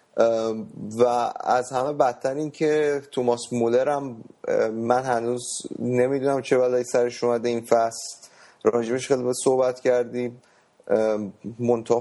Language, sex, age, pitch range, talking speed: Persian, male, 30-49, 110-130 Hz, 120 wpm